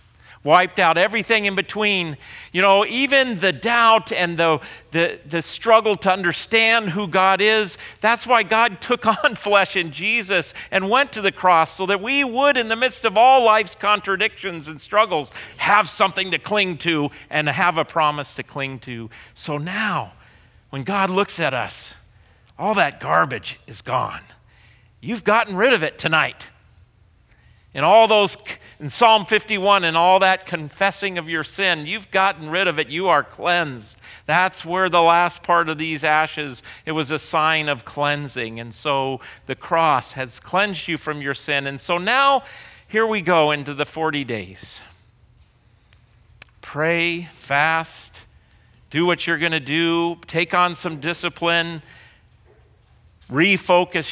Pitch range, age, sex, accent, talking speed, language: 130-195 Hz, 40-59, male, American, 160 wpm, English